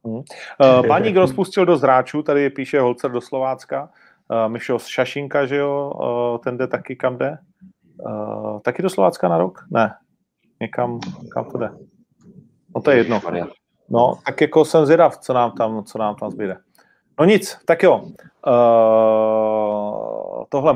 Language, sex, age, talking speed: Czech, male, 30-49, 155 wpm